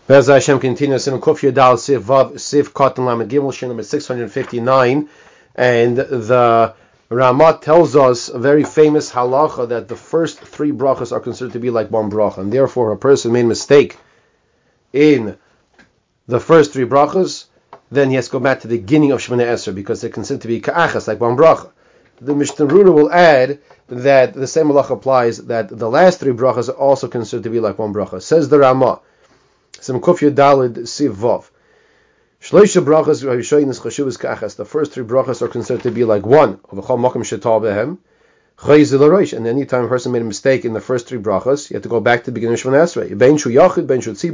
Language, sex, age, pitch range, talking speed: English, male, 30-49, 115-140 Hz, 160 wpm